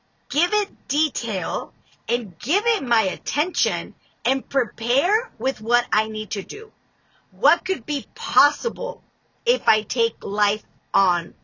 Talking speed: 130 wpm